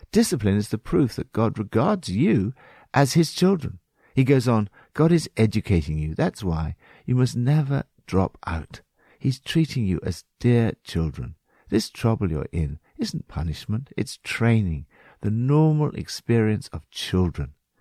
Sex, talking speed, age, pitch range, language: male, 150 wpm, 60-79, 85-135 Hz, English